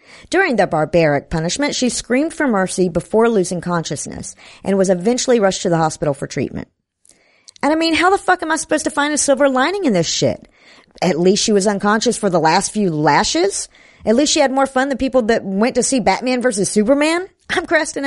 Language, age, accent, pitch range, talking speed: English, 50-69, American, 190-270 Hz, 215 wpm